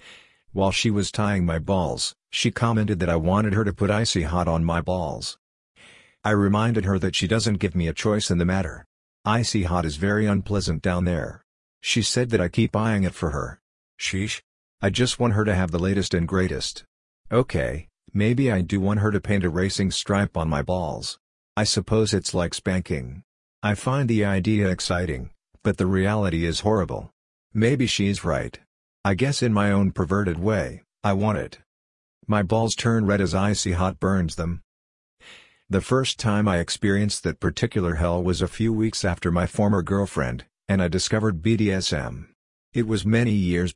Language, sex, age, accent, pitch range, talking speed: English, male, 50-69, American, 85-105 Hz, 185 wpm